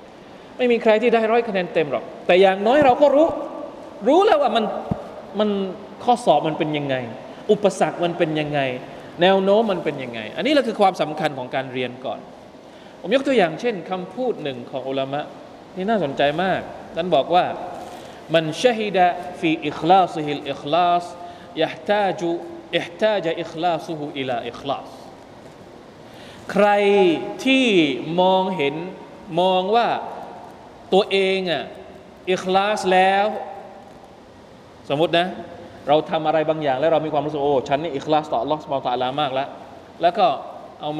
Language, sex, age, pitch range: Thai, male, 20-39, 155-235 Hz